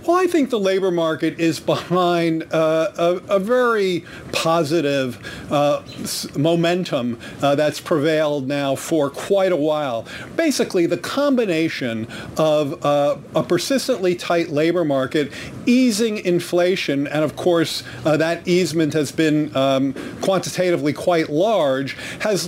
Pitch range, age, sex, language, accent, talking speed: 150-185 Hz, 40-59, male, English, American, 130 wpm